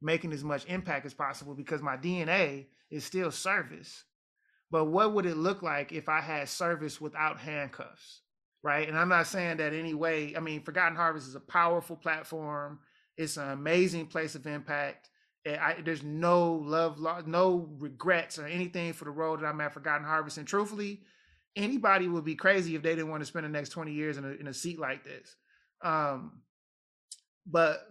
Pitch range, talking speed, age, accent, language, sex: 145-170 Hz, 185 wpm, 20-39, American, English, male